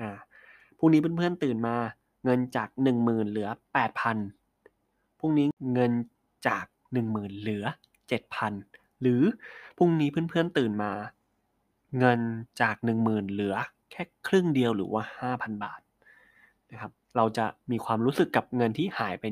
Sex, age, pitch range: male, 20-39, 110-130 Hz